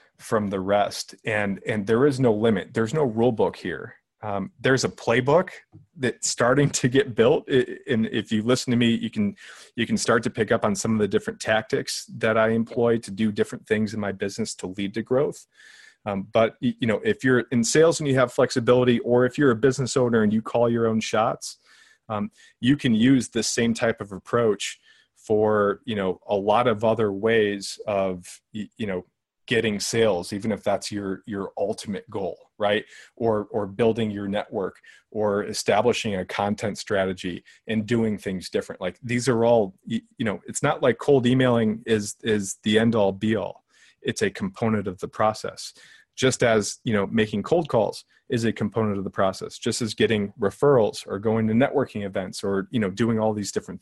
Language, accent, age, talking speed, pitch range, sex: English, American, 30-49, 200 wpm, 105-120 Hz, male